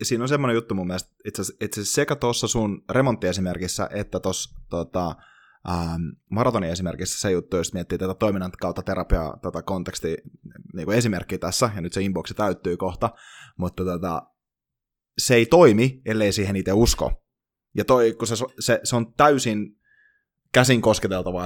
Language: Finnish